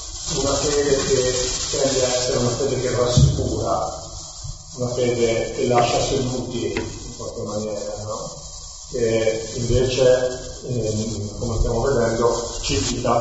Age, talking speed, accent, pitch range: 40-59, 120 wpm, native, 110-135 Hz